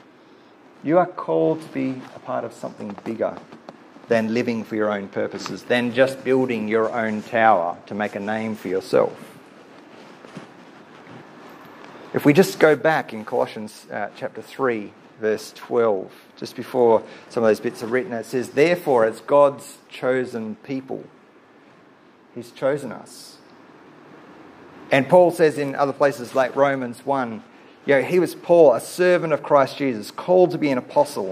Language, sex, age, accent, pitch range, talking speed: English, male, 40-59, Australian, 110-150 Hz, 155 wpm